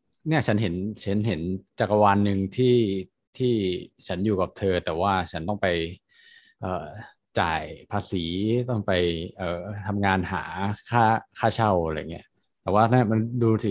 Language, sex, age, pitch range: Thai, male, 20-39, 95-120 Hz